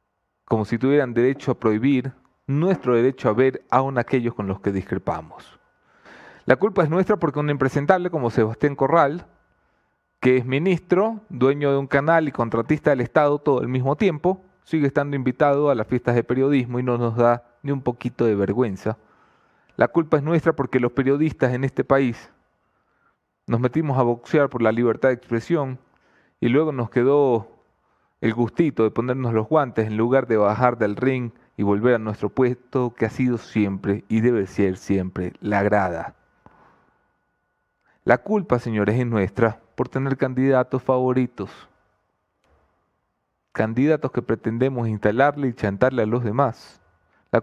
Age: 30-49